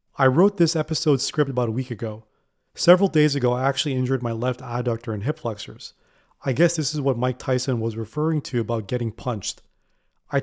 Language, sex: English, male